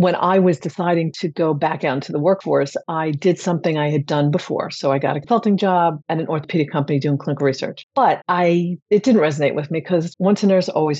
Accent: American